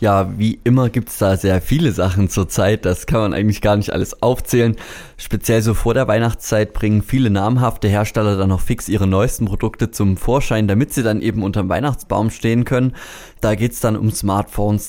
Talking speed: 200 wpm